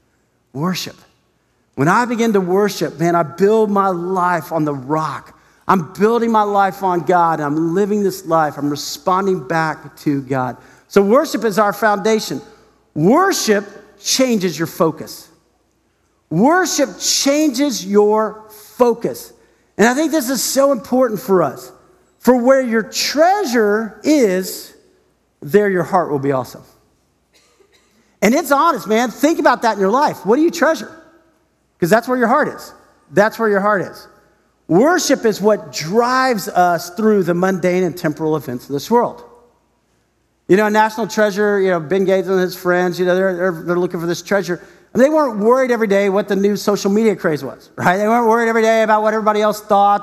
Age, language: 50-69, English